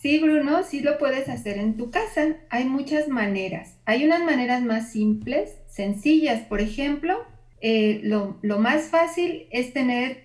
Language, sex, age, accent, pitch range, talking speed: Spanish, female, 40-59, Mexican, 215-275 Hz, 160 wpm